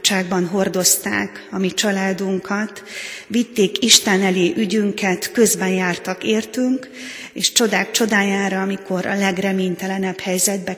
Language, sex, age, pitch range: Hungarian, female, 30-49, 190-210 Hz